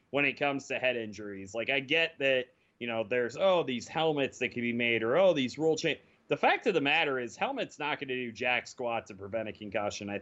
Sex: male